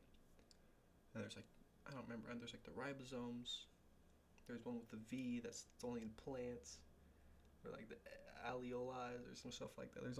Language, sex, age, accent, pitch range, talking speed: English, male, 20-39, American, 80-120 Hz, 165 wpm